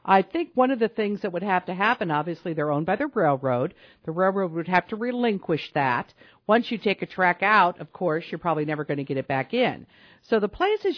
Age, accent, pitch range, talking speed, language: 50-69, American, 155-215 Hz, 240 wpm, English